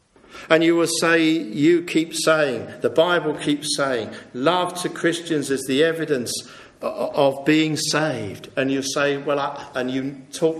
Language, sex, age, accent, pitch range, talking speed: English, male, 50-69, British, 130-155 Hz, 155 wpm